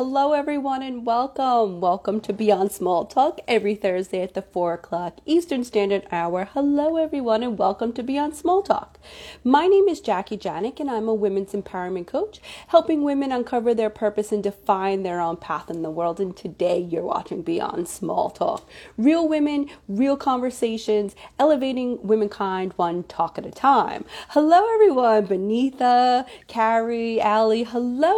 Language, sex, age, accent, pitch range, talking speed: English, female, 30-49, American, 200-275 Hz, 160 wpm